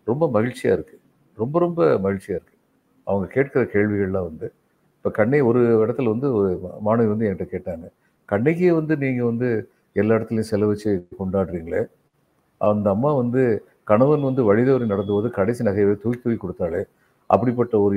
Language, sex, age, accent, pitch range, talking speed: Tamil, male, 50-69, native, 100-135 Hz, 145 wpm